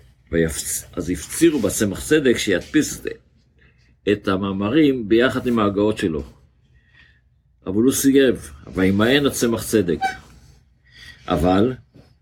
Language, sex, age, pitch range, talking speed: Hebrew, male, 50-69, 85-115 Hz, 100 wpm